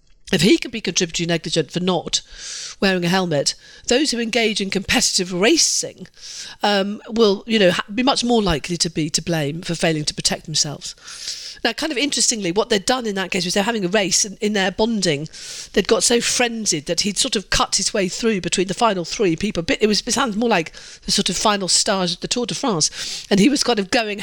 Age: 50-69